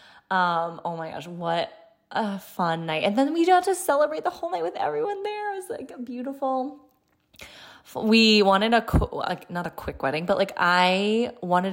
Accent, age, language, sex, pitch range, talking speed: American, 20-39, English, female, 180-240 Hz, 200 wpm